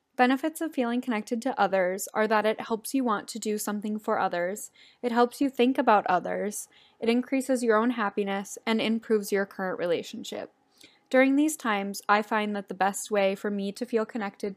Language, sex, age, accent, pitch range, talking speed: English, female, 10-29, American, 195-240 Hz, 195 wpm